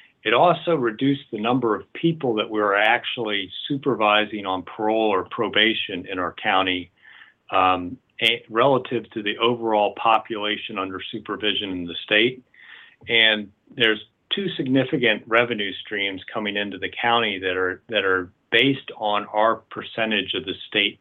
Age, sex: 40-59, male